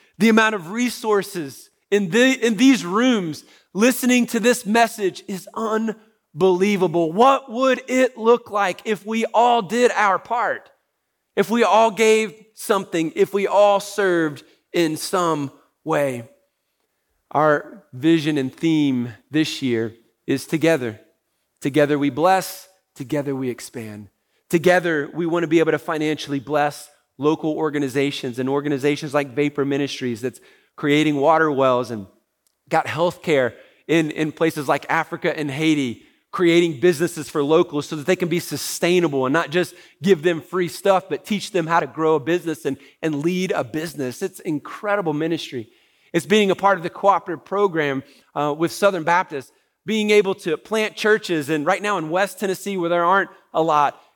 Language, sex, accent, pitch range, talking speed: English, male, American, 150-200 Hz, 160 wpm